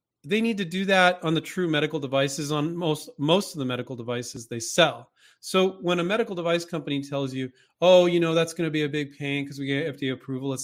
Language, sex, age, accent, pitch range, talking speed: English, male, 30-49, American, 135-170 Hz, 235 wpm